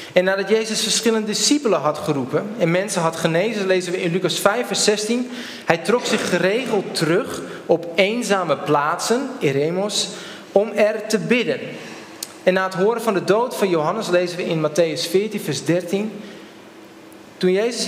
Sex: male